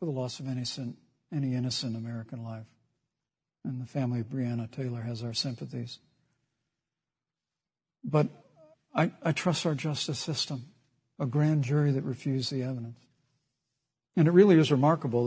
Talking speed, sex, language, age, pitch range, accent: 150 wpm, male, English, 60-79, 130-165 Hz, American